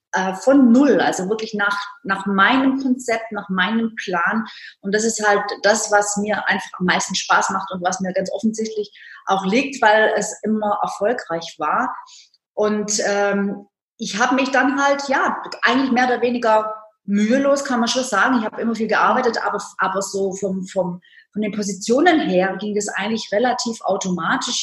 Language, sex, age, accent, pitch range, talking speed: German, female, 30-49, German, 195-240 Hz, 175 wpm